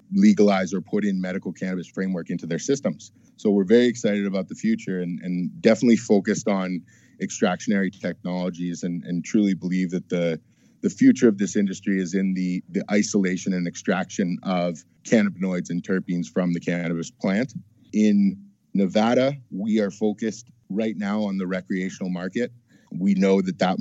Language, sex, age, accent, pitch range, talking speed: English, male, 30-49, American, 90-105 Hz, 165 wpm